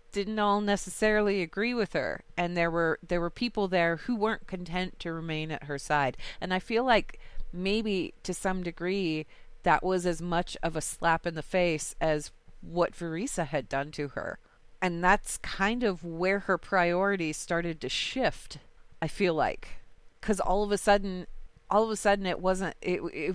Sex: female